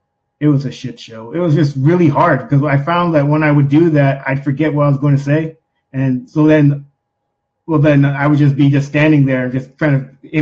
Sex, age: male, 20-39